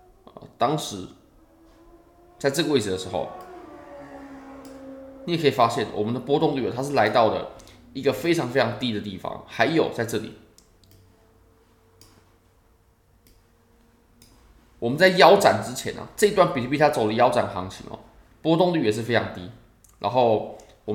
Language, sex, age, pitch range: Chinese, male, 20-39, 105-145 Hz